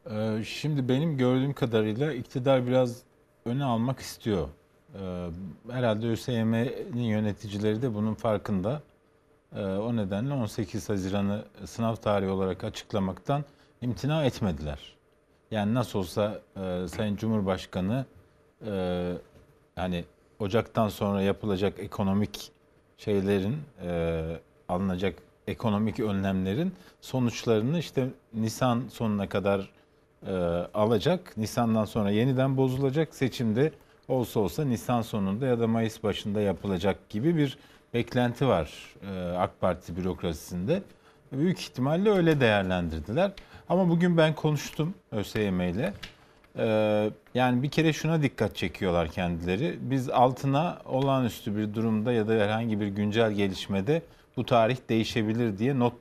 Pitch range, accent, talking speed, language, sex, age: 100-130 Hz, native, 105 wpm, Turkish, male, 40-59